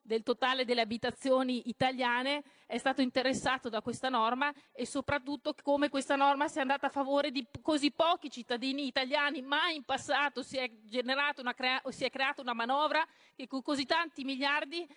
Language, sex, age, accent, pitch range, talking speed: Italian, female, 40-59, native, 240-290 Hz, 160 wpm